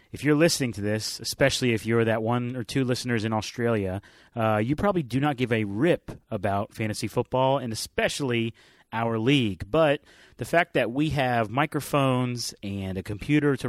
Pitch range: 110-135 Hz